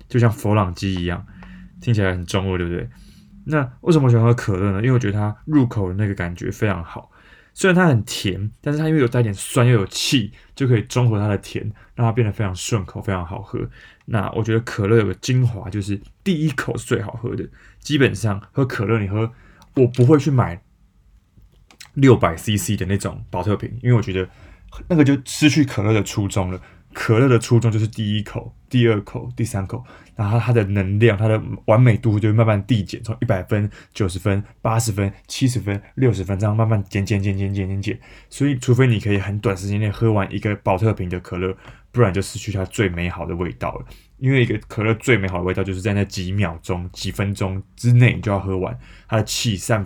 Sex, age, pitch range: male, 20-39, 95-120 Hz